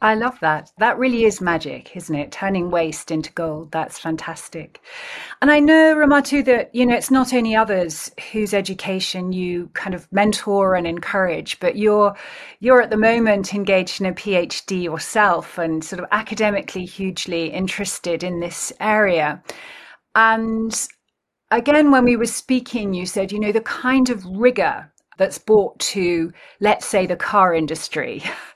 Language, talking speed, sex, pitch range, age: English, 160 wpm, female, 175-240 Hz, 40-59